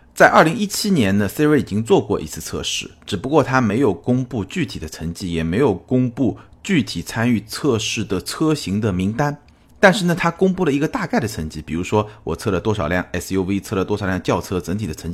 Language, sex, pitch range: Chinese, male, 90-125 Hz